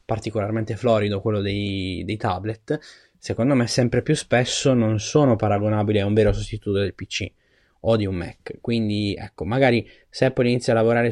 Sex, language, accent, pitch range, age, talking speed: male, Italian, native, 100-120 Hz, 20-39, 175 wpm